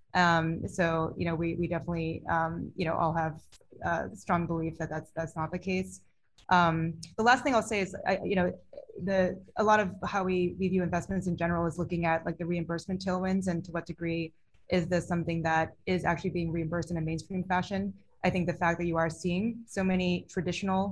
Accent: American